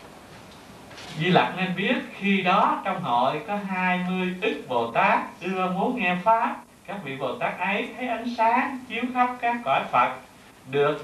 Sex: male